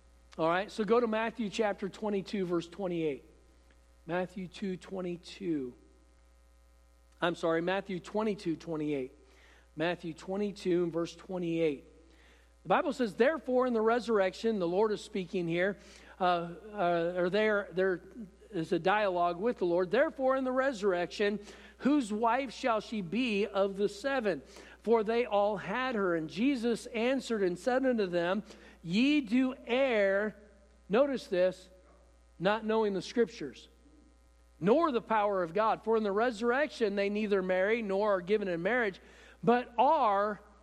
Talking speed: 145 wpm